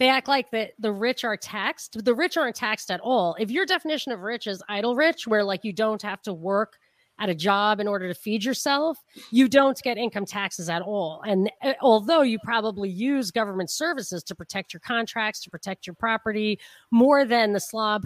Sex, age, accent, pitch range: female, 30-49, American, 200-245 Hz